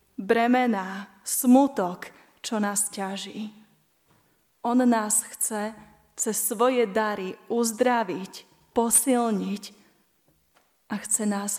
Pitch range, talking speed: 195-225 Hz, 85 wpm